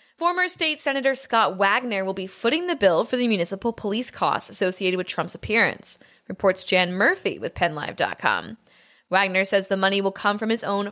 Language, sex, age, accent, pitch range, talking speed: English, female, 20-39, American, 200-260 Hz, 180 wpm